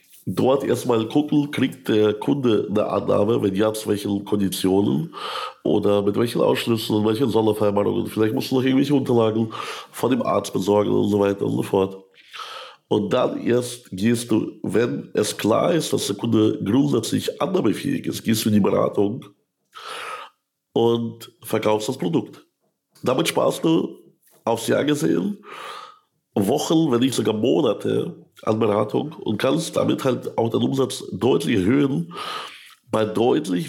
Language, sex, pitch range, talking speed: German, male, 105-145 Hz, 155 wpm